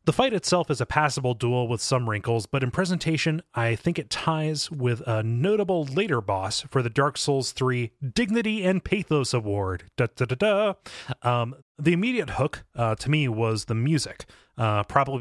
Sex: male